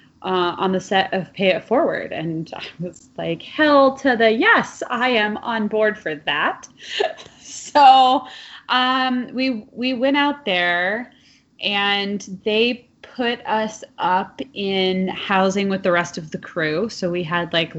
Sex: female